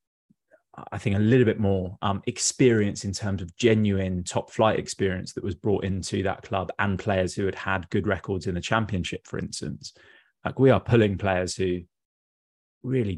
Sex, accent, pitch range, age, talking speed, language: male, British, 90-105 Hz, 20-39, 180 wpm, English